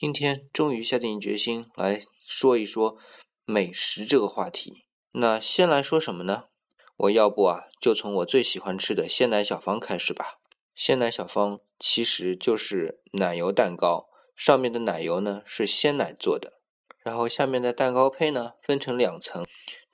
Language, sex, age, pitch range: Chinese, male, 20-39, 105-155 Hz